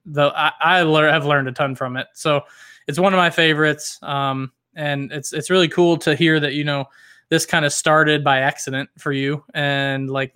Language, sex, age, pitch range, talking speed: English, male, 20-39, 140-155 Hz, 210 wpm